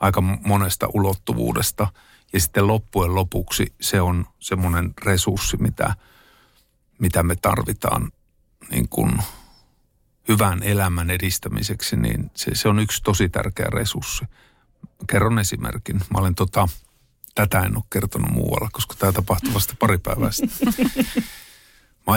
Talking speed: 120 wpm